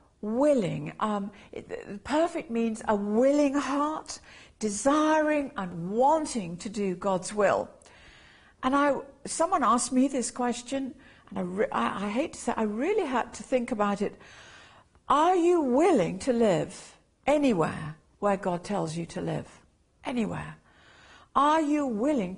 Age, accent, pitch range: 60-79, British, 185-245 Hz